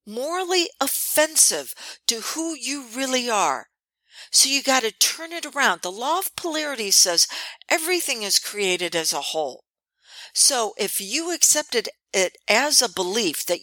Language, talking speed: English, 150 wpm